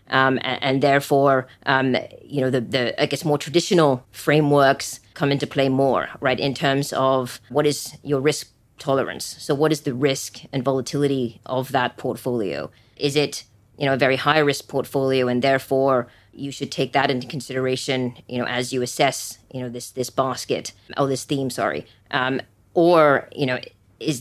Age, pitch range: 30-49, 125-140 Hz